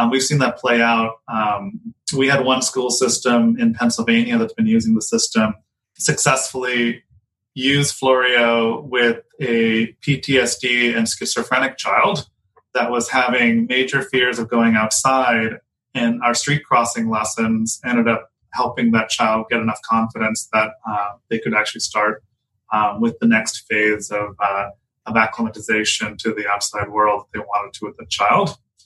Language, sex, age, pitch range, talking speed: English, male, 30-49, 110-130 Hz, 150 wpm